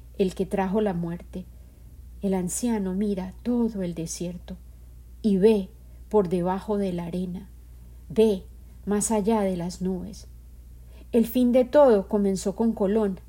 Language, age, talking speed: Spanish, 40-59, 140 wpm